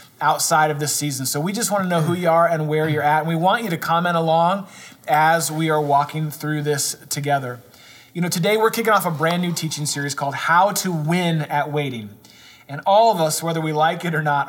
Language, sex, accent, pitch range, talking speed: English, male, American, 145-180 Hz, 240 wpm